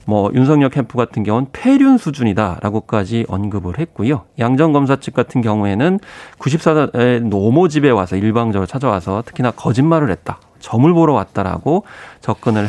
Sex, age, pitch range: male, 30-49, 110-150 Hz